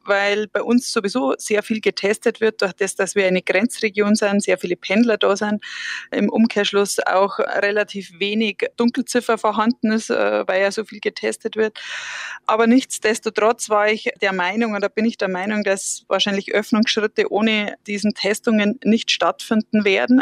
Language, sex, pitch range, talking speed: German, female, 205-235 Hz, 160 wpm